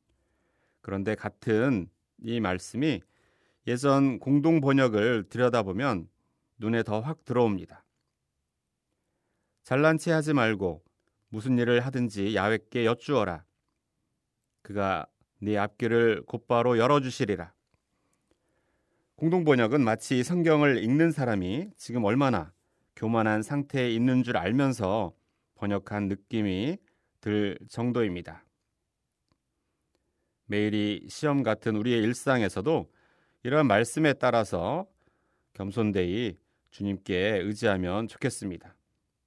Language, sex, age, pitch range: Korean, male, 40-59, 105-135 Hz